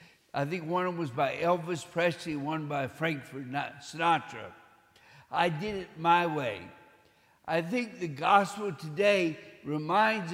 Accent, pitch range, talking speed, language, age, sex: American, 155-205 Hz, 140 wpm, English, 60-79, male